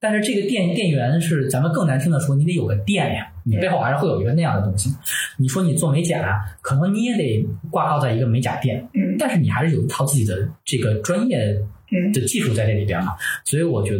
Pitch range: 105-145 Hz